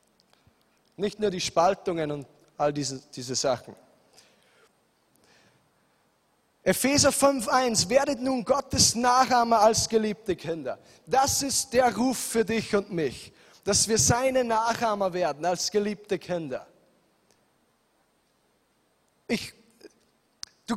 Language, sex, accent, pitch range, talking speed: German, male, German, 175-260 Hz, 100 wpm